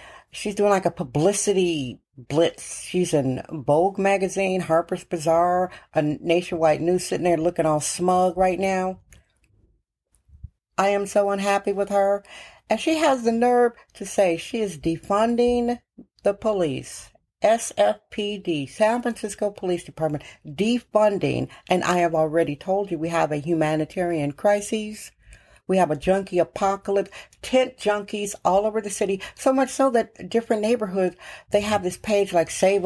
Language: English